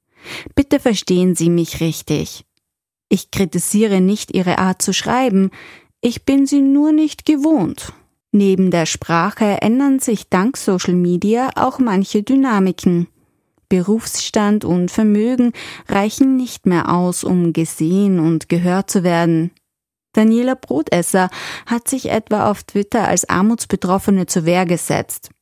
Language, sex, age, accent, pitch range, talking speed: German, female, 20-39, German, 180-240 Hz, 130 wpm